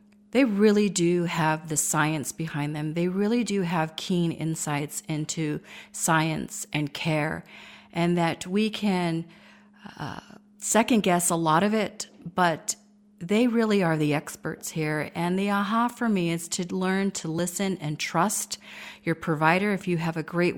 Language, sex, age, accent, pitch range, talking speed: English, female, 40-59, American, 160-205 Hz, 160 wpm